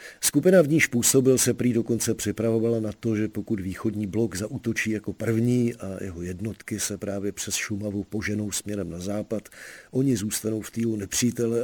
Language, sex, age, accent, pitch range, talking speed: Czech, male, 50-69, native, 100-115 Hz, 170 wpm